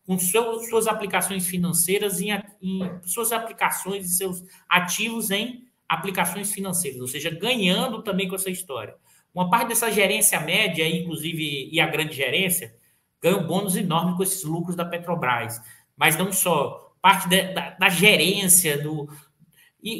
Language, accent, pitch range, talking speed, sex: Portuguese, Brazilian, 175-215 Hz, 155 wpm, male